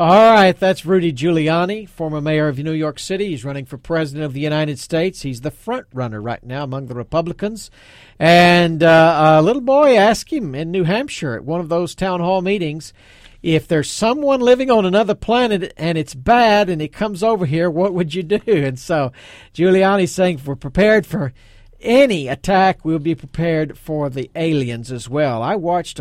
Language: English